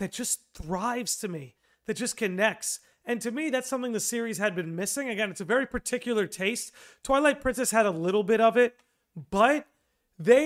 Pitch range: 210-245 Hz